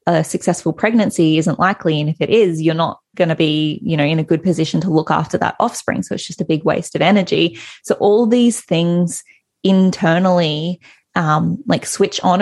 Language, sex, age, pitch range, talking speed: English, female, 20-39, 160-190 Hz, 205 wpm